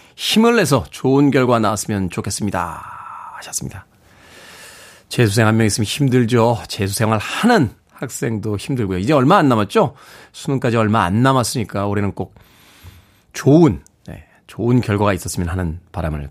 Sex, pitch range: male, 100-135 Hz